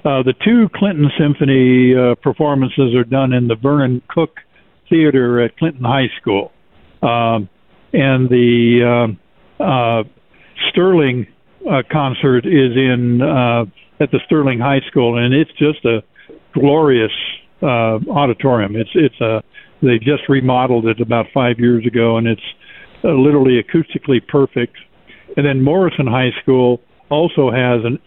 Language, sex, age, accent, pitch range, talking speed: English, male, 60-79, American, 120-145 Hz, 140 wpm